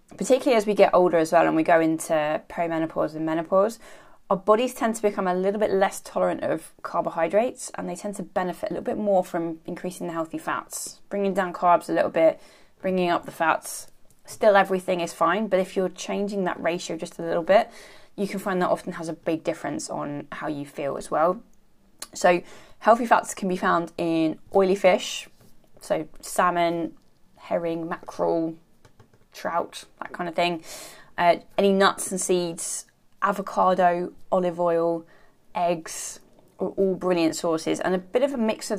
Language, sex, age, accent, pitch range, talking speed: English, female, 20-39, British, 170-205 Hz, 180 wpm